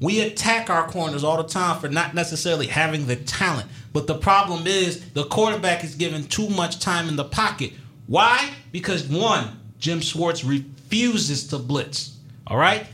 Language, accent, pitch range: English, American, 145-190 Hz